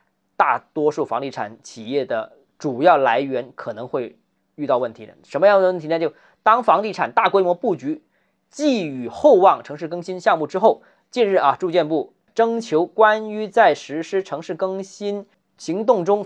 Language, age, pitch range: Chinese, 20-39, 165-230 Hz